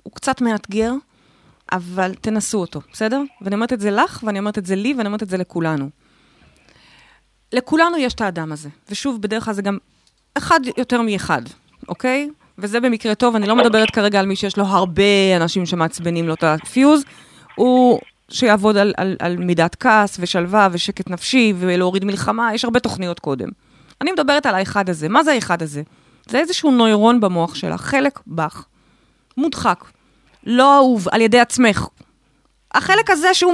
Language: Hebrew